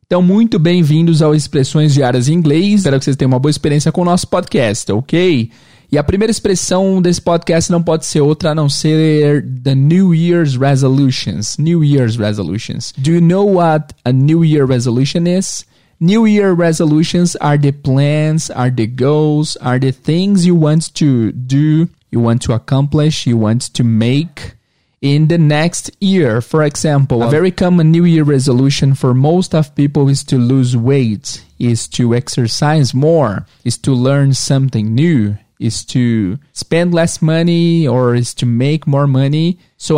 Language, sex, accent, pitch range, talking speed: English, male, Brazilian, 130-165 Hz, 170 wpm